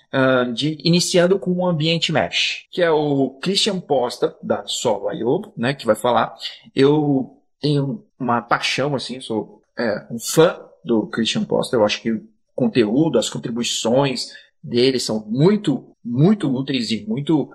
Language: Portuguese